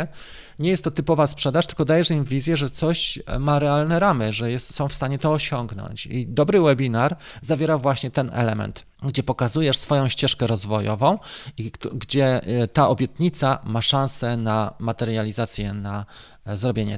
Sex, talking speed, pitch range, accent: male, 150 wpm, 115-150 Hz, native